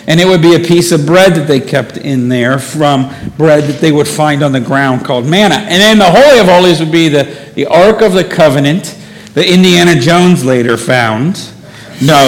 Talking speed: 215 wpm